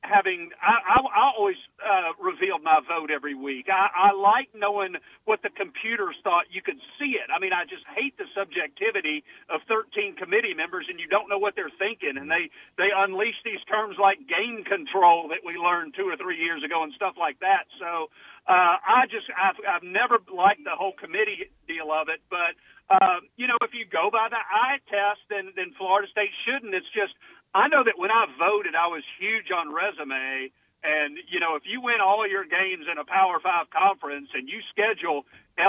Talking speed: 205 wpm